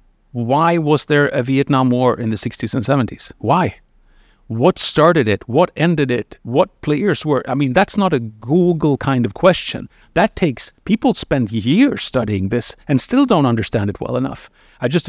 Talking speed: 185 wpm